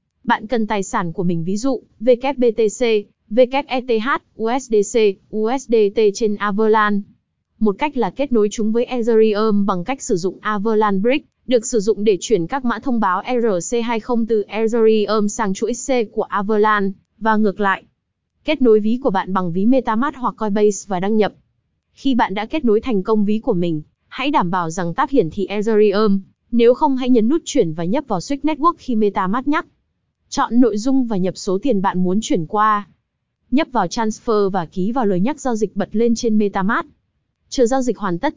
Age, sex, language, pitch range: 20-39, female, Vietnamese, 200-245 Hz